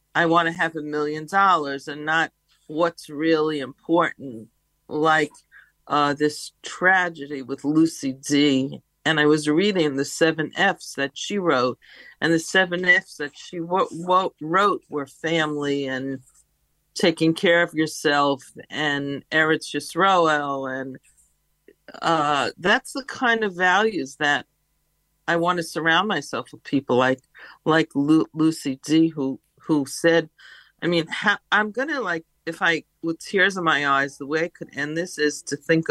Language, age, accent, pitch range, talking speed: English, 50-69, American, 145-170 Hz, 155 wpm